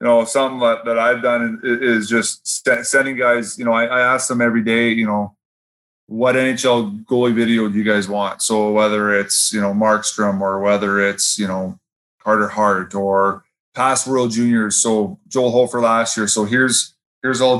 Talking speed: 190 wpm